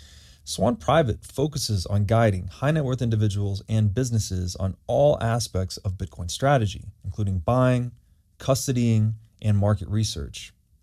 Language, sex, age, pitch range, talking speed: English, male, 20-39, 95-120 Hz, 115 wpm